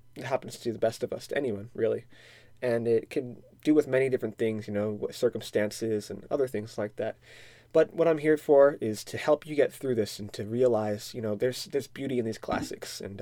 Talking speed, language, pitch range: 225 wpm, English, 115-140 Hz